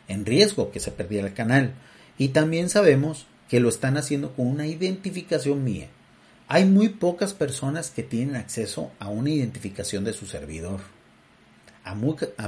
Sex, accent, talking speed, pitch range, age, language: male, Mexican, 155 wpm, 110-155 Hz, 40-59, Spanish